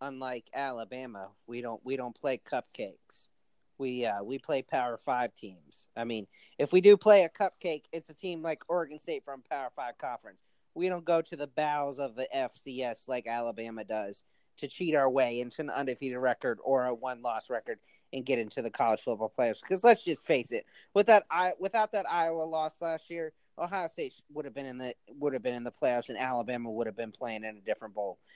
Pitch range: 125-170 Hz